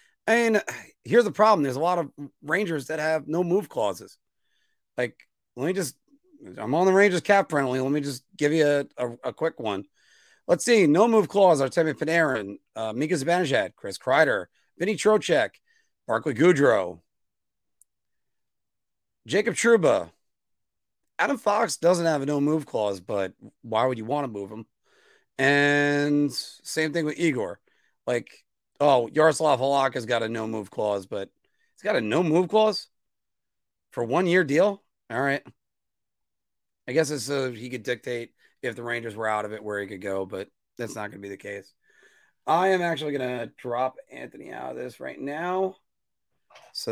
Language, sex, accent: English, male, American